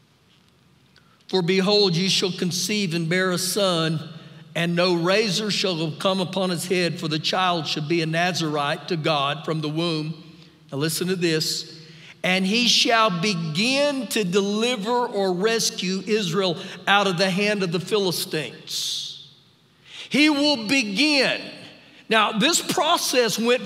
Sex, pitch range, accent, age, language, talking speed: male, 185-260 Hz, American, 50-69, English, 140 wpm